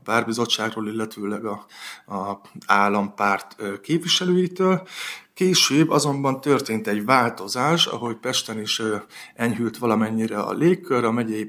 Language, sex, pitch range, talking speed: Hungarian, male, 110-130 Hz, 105 wpm